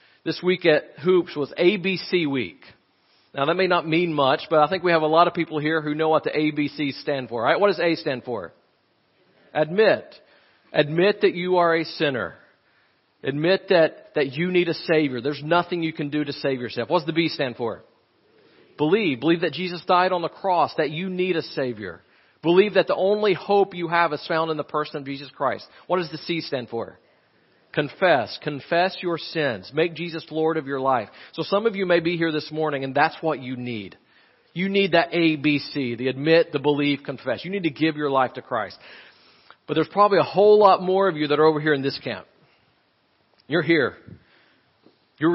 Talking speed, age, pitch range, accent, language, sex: 210 wpm, 40-59, 145-175 Hz, American, English, male